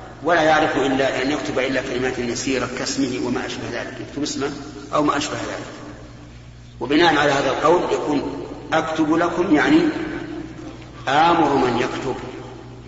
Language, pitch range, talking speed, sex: Arabic, 120-155 Hz, 135 wpm, male